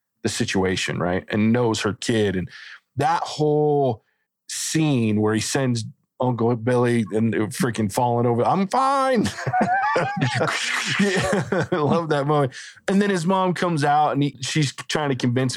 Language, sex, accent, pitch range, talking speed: English, male, American, 110-145 Hz, 140 wpm